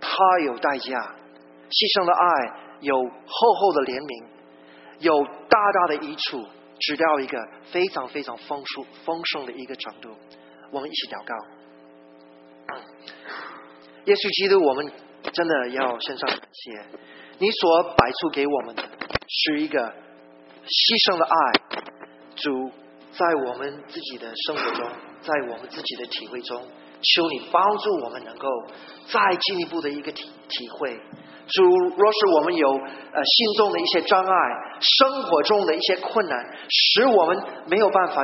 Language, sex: Chinese, male